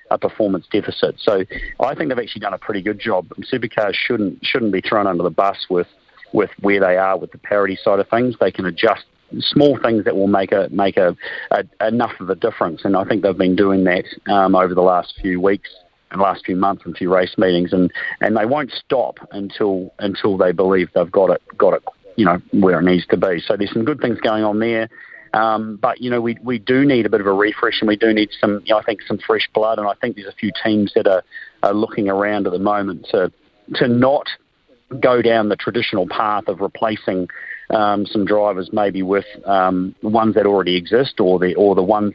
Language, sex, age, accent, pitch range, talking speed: English, male, 40-59, Australian, 90-110 Hz, 230 wpm